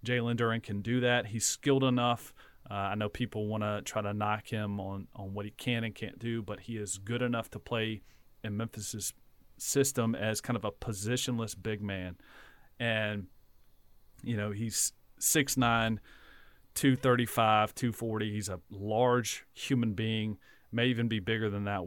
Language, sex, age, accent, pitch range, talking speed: English, male, 40-59, American, 105-125 Hz, 165 wpm